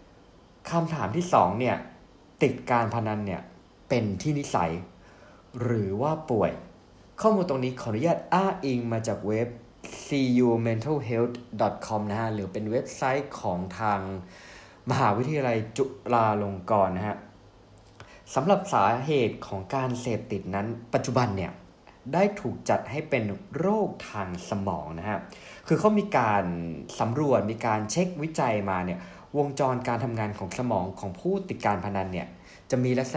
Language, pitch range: Thai, 100-140 Hz